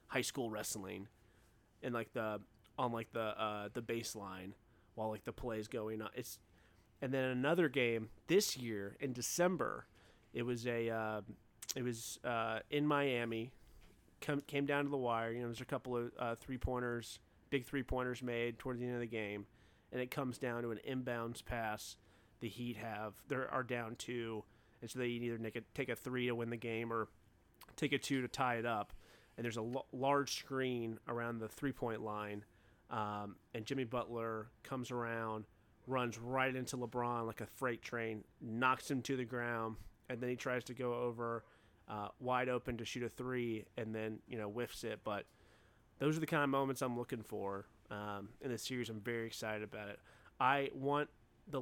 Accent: American